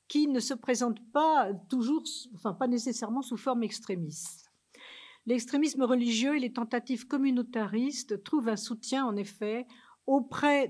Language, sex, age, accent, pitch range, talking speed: French, female, 50-69, French, 215-265 Hz, 135 wpm